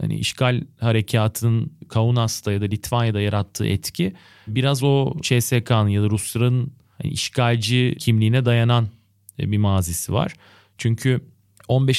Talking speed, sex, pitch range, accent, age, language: 120 wpm, male, 100-125 Hz, native, 30-49, Turkish